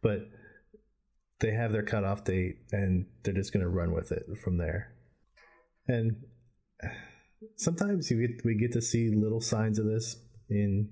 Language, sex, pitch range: English, male, 95-115 Hz